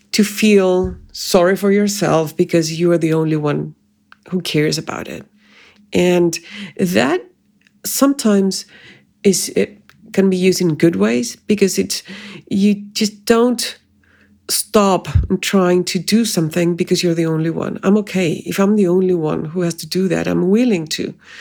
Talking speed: 155 wpm